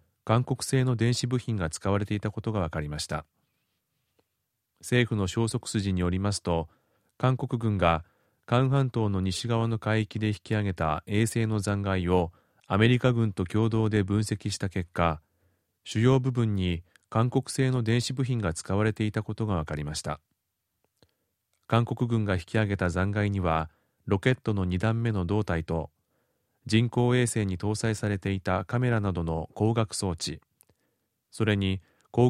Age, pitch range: 30-49, 90-115 Hz